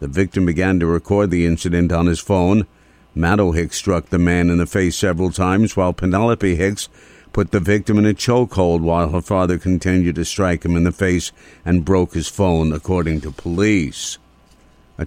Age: 60-79